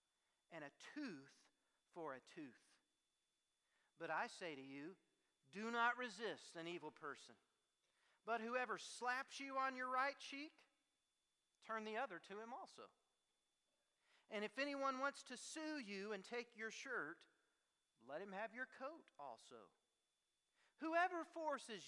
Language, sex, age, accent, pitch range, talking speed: English, male, 40-59, American, 190-245 Hz, 135 wpm